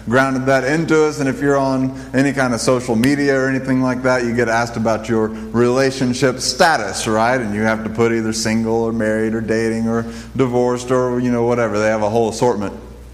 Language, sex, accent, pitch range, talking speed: English, male, American, 115-140 Hz, 215 wpm